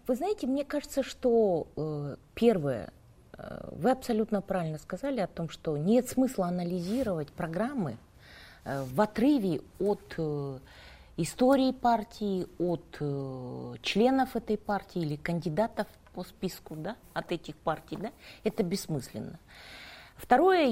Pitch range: 165-245 Hz